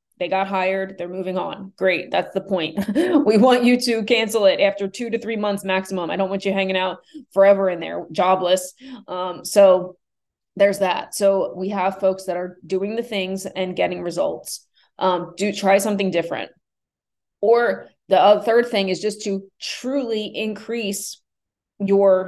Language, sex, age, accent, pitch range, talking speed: English, female, 20-39, American, 185-220 Hz, 170 wpm